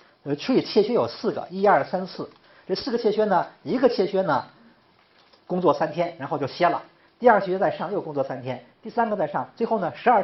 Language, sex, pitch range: Chinese, male, 145-205 Hz